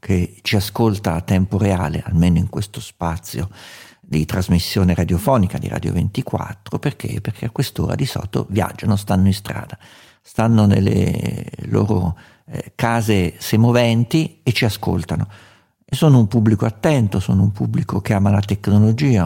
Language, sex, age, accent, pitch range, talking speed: Italian, male, 50-69, native, 100-120 Hz, 145 wpm